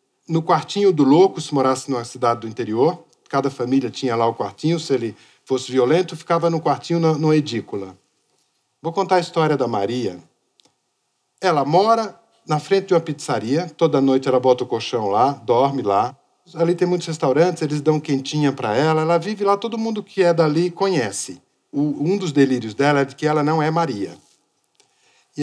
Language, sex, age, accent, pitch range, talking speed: Portuguese, male, 50-69, Brazilian, 135-195 Hz, 185 wpm